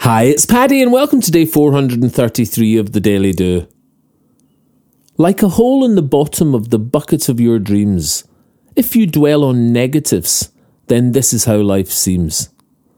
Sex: male